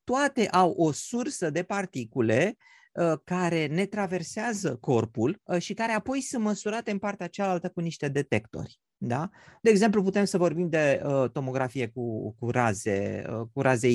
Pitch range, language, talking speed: 135-215 Hz, Romanian, 135 wpm